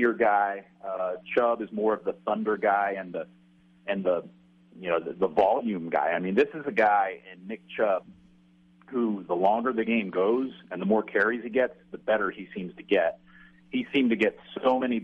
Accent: American